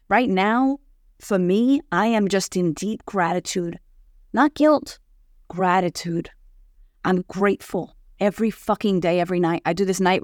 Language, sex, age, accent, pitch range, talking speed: English, female, 30-49, American, 165-205 Hz, 140 wpm